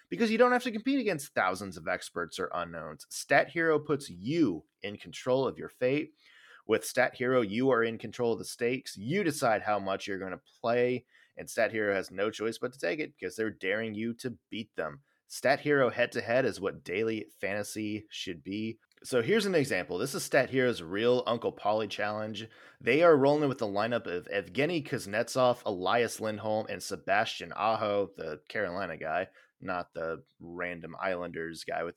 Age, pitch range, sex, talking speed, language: 30-49, 95-130 Hz, male, 190 wpm, English